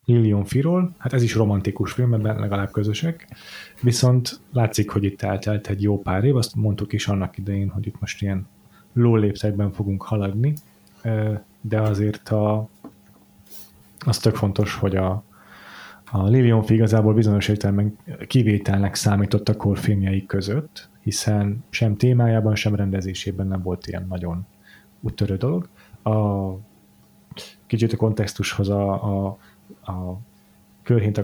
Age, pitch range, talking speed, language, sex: 30-49, 100-115 Hz, 130 wpm, Hungarian, male